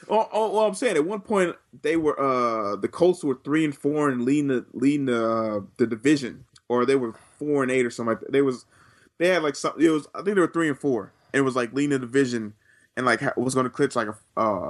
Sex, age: male, 20-39